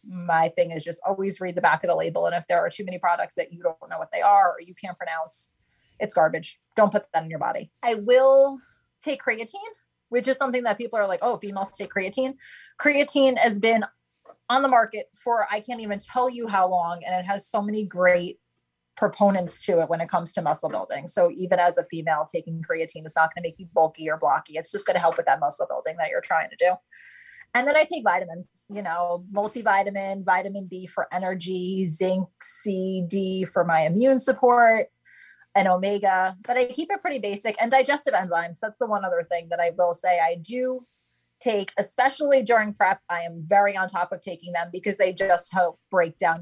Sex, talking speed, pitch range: female, 220 wpm, 175-235 Hz